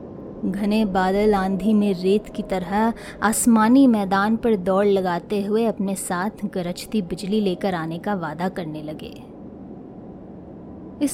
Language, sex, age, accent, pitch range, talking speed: Hindi, female, 20-39, native, 190-255 Hz, 130 wpm